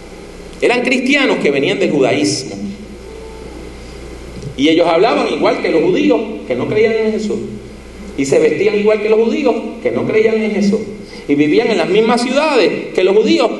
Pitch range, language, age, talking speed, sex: 145-230 Hz, English, 40-59, 170 wpm, male